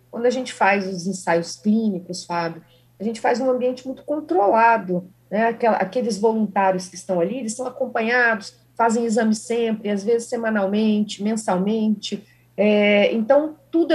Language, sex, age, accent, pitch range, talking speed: Portuguese, female, 40-59, Brazilian, 180-235 Hz, 140 wpm